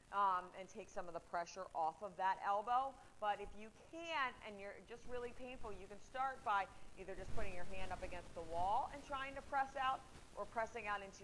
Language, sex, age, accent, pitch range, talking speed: English, female, 30-49, American, 190-245 Hz, 225 wpm